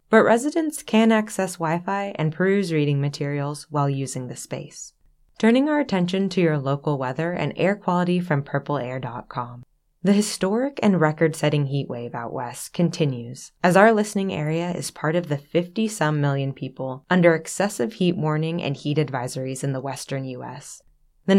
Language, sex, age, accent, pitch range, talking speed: English, female, 20-39, American, 140-200 Hz, 160 wpm